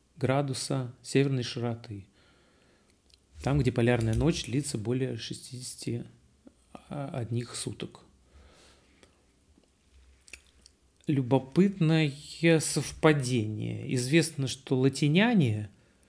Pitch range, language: 110-150 Hz, Russian